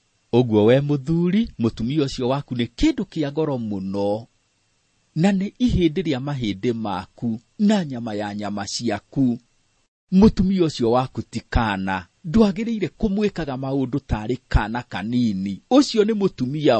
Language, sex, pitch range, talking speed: English, male, 105-155 Hz, 110 wpm